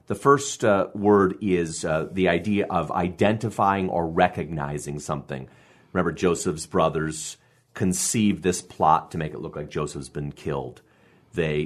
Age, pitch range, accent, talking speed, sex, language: 30-49, 80-105 Hz, American, 145 wpm, male, English